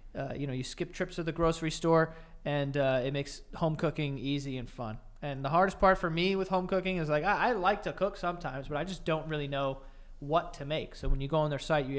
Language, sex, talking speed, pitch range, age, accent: English, male, 265 wpm, 135-165 Hz, 20-39, American